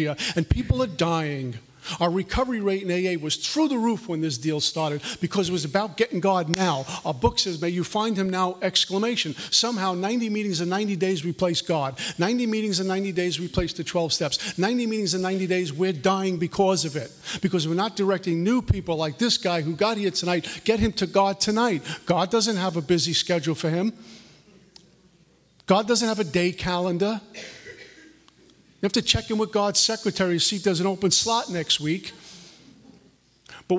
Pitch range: 170-215 Hz